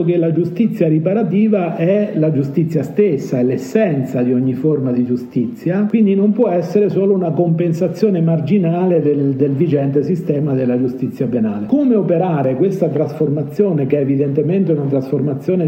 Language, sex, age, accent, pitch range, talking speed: Italian, male, 50-69, native, 145-195 Hz, 150 wpm